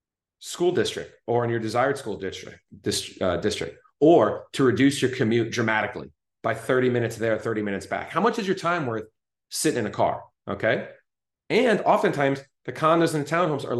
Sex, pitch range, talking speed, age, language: male, 110-130 Hz, 185 wpm, 30-49, English